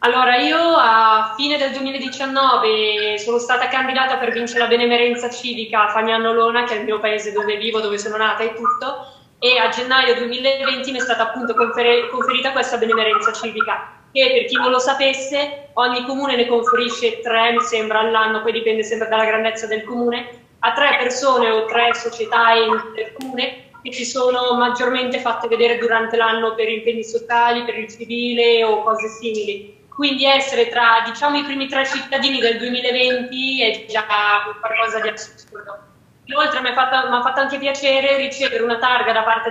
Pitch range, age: 225-260 Hz, 20-39